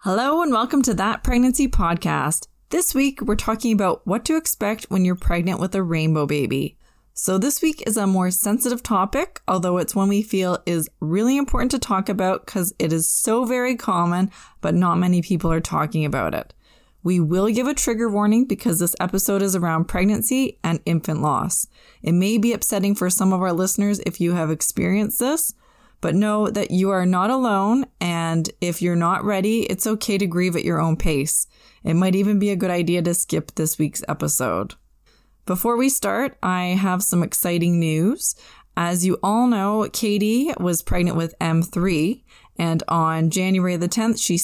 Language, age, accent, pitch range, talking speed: English, 20-39, American, 170-220 Hz, 190 wpm